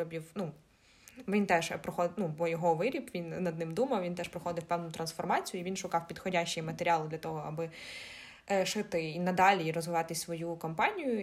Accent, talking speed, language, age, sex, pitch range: native, 170 wpm, Ukrainian, 20-39, female, 175-205 Hz